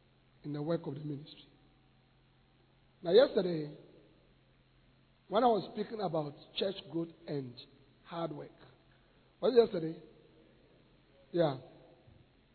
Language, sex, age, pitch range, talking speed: English, male, 50-69, 145-225 Hz, 105 wpm